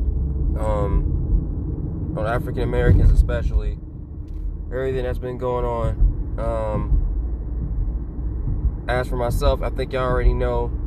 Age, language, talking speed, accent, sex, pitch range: 20-39, English, 105 wpm, American, male, 105-130 Hz